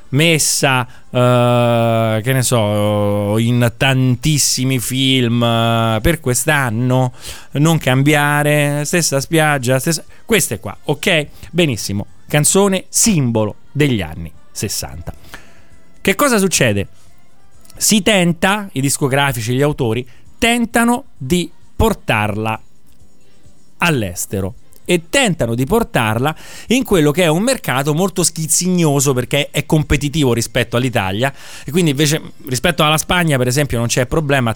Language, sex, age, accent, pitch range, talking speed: Italian, male, 30-49, native, 120-165 Hz, 110 wpm